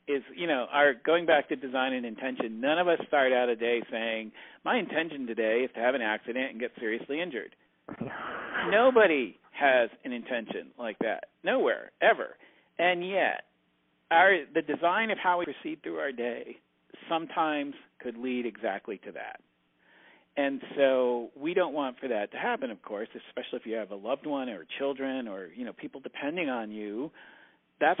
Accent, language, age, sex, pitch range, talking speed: American, English, 50-69, male, 120-170 Hz, 180 wpm